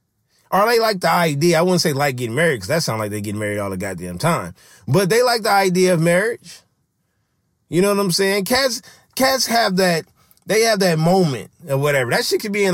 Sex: male